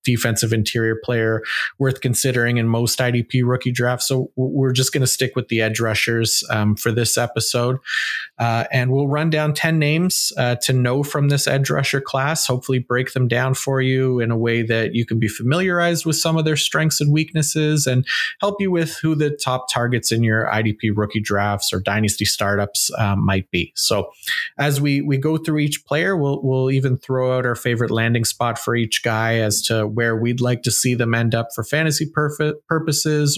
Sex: male